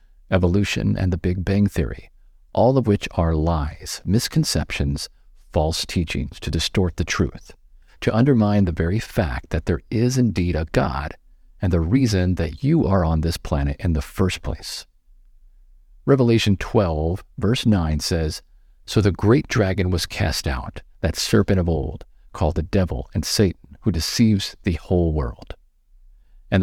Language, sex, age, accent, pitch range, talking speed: English, male, 50-69, American, 80-100 Hz, 155 wpm